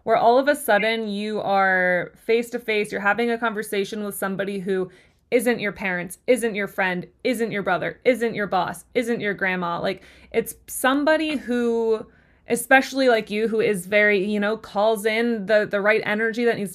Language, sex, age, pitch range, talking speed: English, female, 20-39, 195-235 Hz, 185 wpm